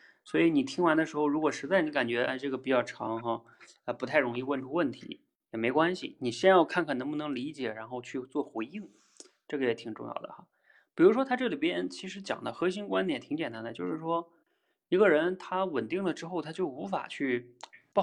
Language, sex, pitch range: Chinese, male, 120-195 Hz